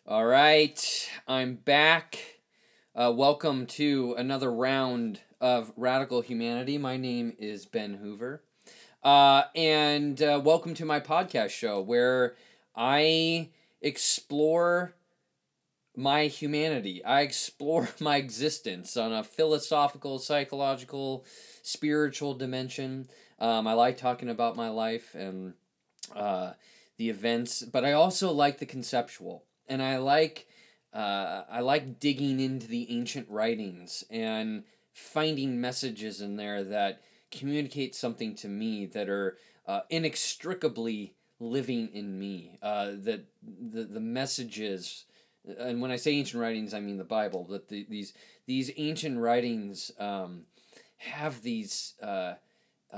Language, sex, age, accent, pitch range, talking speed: English, male, 20-39, American, 115-150 Hz, 120 wpm